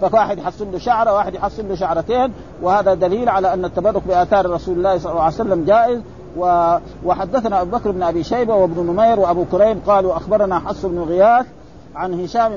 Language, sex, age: Arabic, male, 50-69